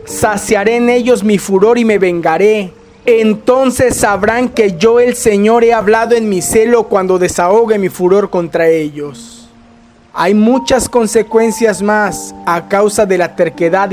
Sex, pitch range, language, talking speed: male, 180-230 Hz, Spanish, 145 wpm